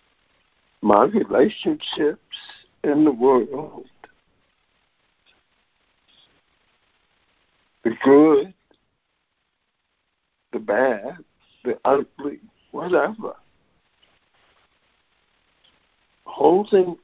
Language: English